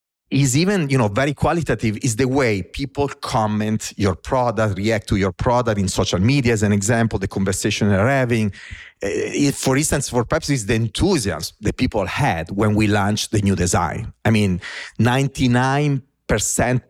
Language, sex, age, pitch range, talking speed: English, male, 40-59, 100-130 Hz, 165 wpm